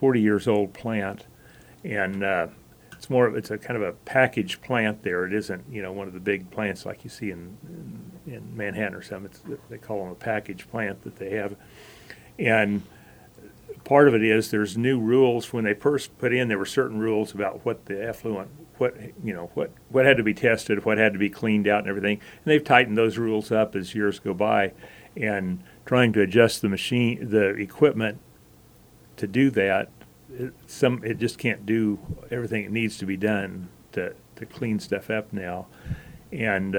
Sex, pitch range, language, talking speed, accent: male, 100-115 Hz, English, 200 wpm, American